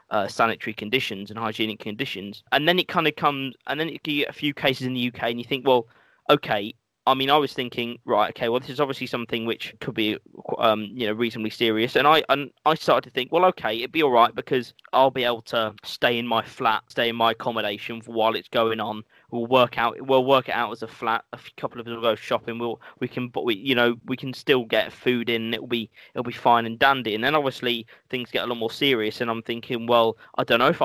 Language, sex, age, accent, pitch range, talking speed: English, male, 20-39, British, 115-135 Hz, 260 wpm